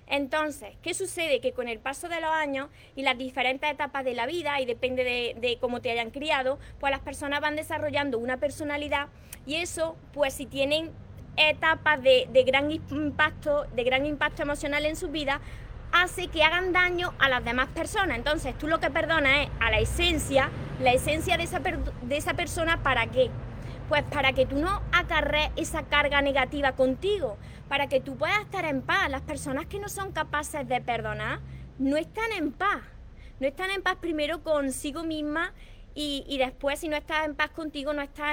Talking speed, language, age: 195 wpm, Spanish, 20-39